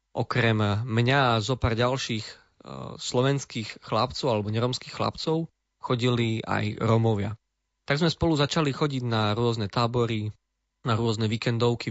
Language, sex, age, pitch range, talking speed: Slovak, male, 20-39, 110-130 Hz, 130 wpm